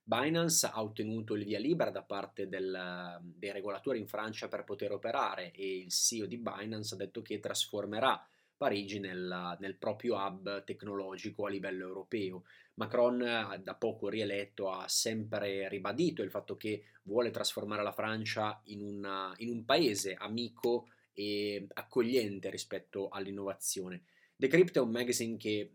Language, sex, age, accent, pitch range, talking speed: Italian, male, 20-39, native, 100-115 Hz, 145 wpm